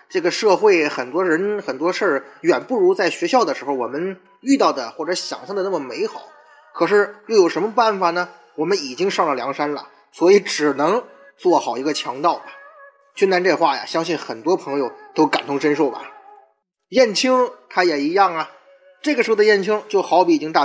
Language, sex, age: Chinese, male, 20-39